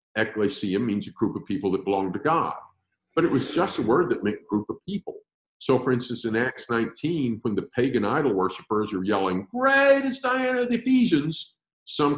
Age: 50-69